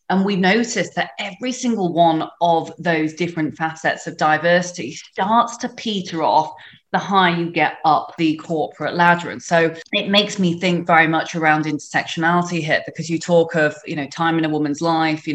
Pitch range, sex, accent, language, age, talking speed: 155-175 Hz, female, British, English, 30-49, 190 wpm